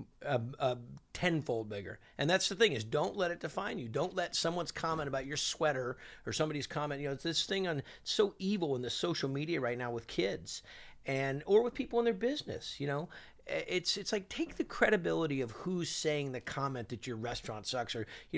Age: 40-59